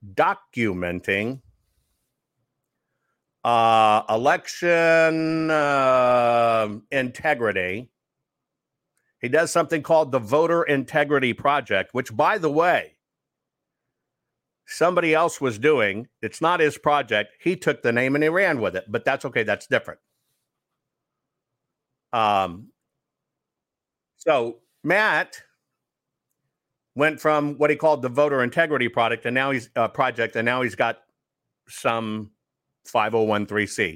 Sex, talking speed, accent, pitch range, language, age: male, 110 wpm, American, 115-150 Hz, English, 50-69